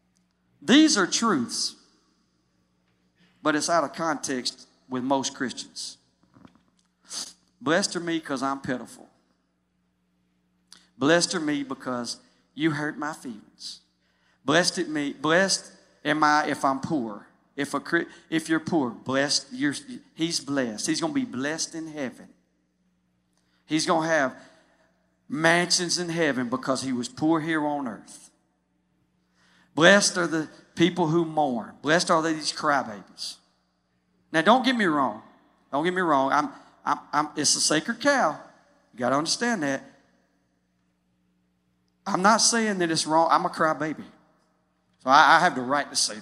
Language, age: English, 40-59